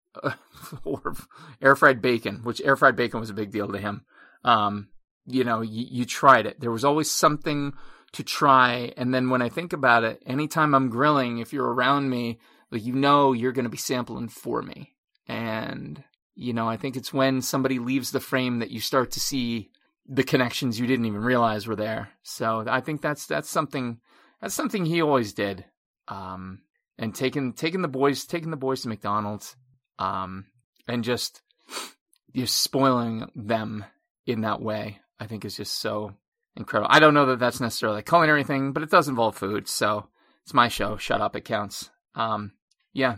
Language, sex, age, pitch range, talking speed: English, male, 30-49, 110-135 Hz, 190 wpm